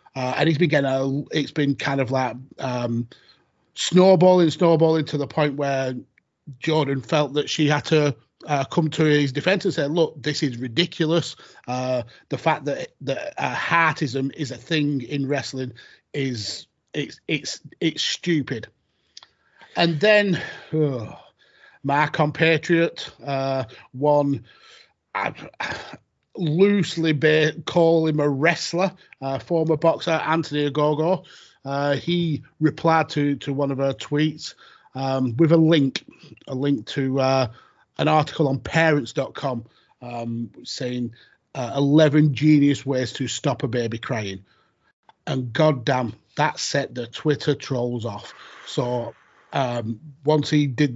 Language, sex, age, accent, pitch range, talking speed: English, male, 30-49, British, 130-155 Hz, 135 wpm